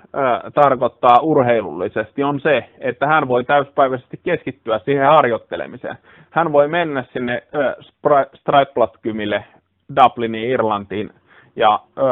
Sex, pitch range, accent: male, 110-135 Hz, Finnish